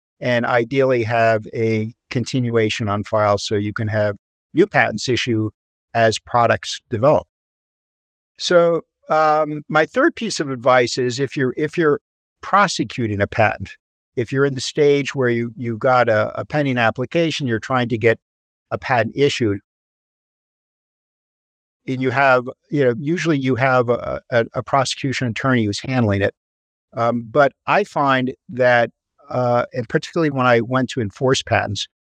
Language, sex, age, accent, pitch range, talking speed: English, male, 50-69, American, 110-140 Hz, 155 wpm